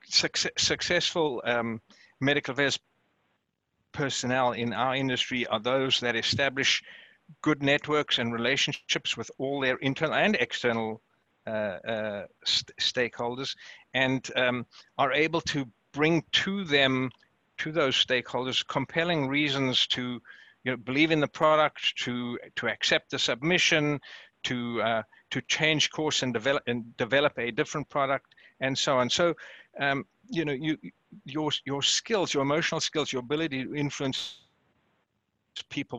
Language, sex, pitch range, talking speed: English, male, 125-150 Hz, 135 wpm